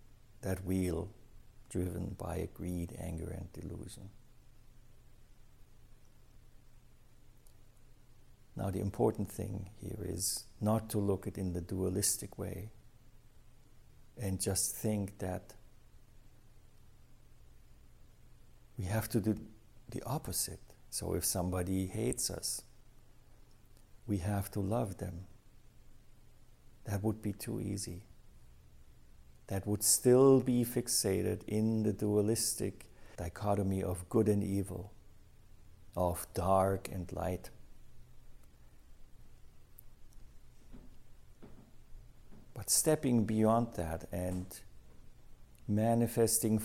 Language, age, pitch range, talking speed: English, 60-79, 95-115 Hz, 90 wpm